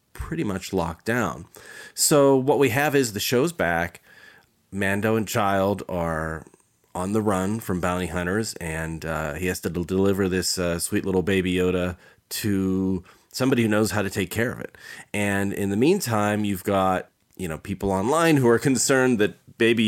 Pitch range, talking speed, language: 90-115 Hz, 180 wpm, English